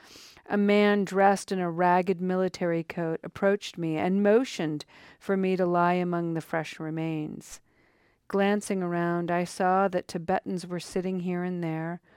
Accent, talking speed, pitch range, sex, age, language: American, 155 wpm, 160-190 Hz, female, 50-69, English